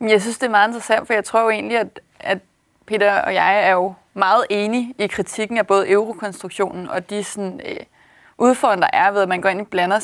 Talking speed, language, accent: 225 wpm, Danish, native